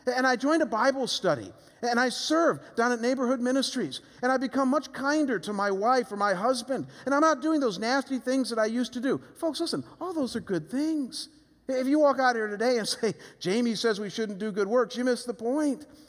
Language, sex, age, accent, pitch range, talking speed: English, male, 50-69, American, 150-255 Hz, 230 wpm